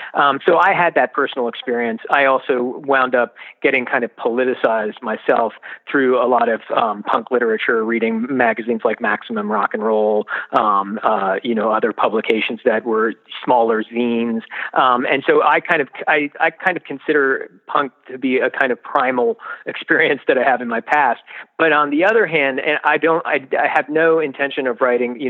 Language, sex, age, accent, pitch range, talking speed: English, male, 40-59, American, 120-160 Hz, 190 wpm